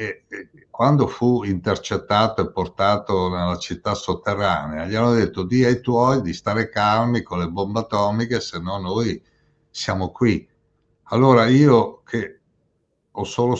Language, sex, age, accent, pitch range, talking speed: Italian, male, 60-79, native, 100-130 Hz, 135 wpm